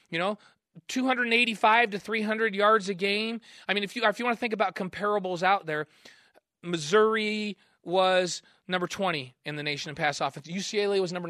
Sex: male